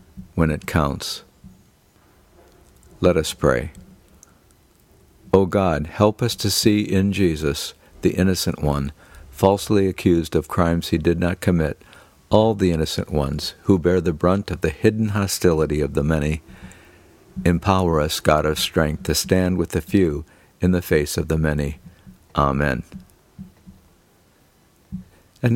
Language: English